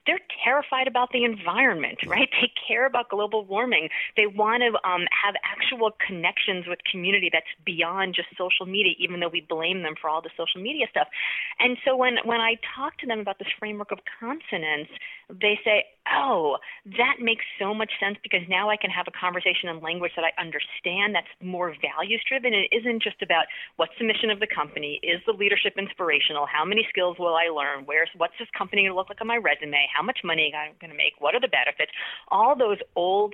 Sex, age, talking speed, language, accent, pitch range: female, 30-49, 210 wpm, English, American, 175-230 Hz